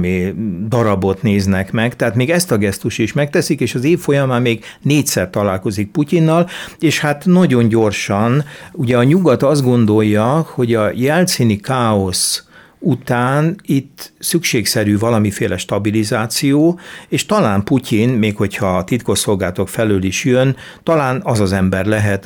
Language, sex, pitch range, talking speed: Hungarian, male, 100-135 Hz, 135 wpm